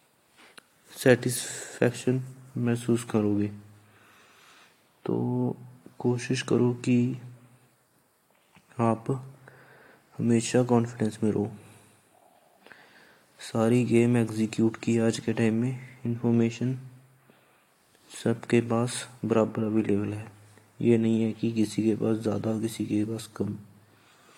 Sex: male